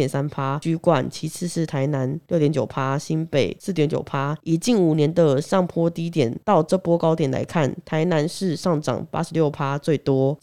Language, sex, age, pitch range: Chinese, female, 20-39, 150-185 Hz